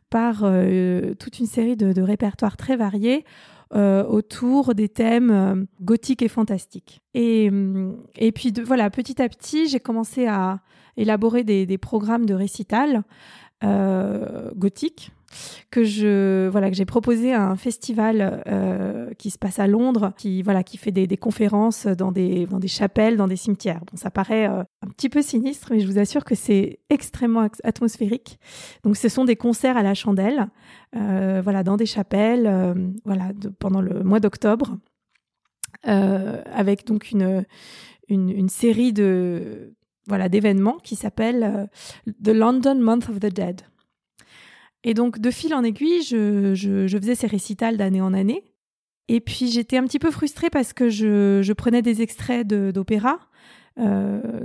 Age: 20-39